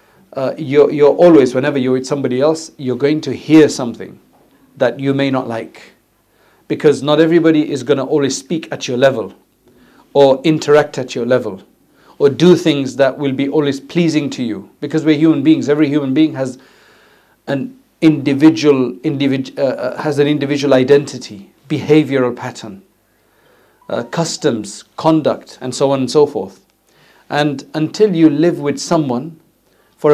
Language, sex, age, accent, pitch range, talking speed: English, male, 50-69, South African, 135-160 Hz, 150 wpm